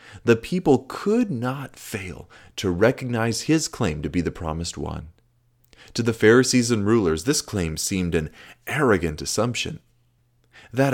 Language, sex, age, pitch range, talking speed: English, male, 30-49, 95-125 Hz, 145 wpm